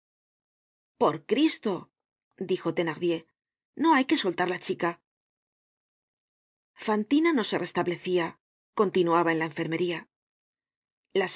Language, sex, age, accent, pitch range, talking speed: Spanish, female, 40-59, Spanish, 175-225 Hz, 100 wpm